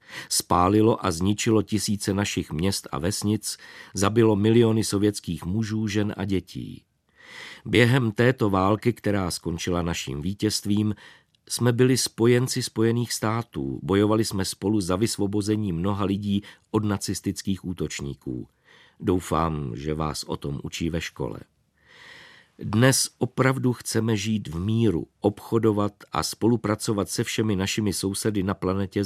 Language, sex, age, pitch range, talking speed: Czech, male, 50-69, 90-110 Hz, 125 wpm